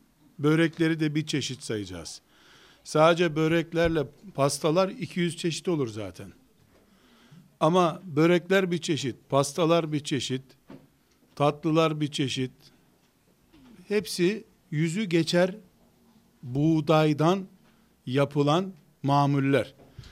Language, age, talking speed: Turkish, 60-79, 85 wpm